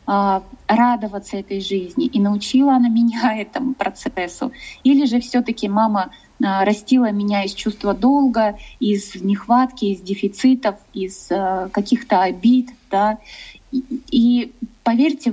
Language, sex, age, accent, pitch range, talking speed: Russian, female, 20-39, native, 200-245 Hz, 110 wpm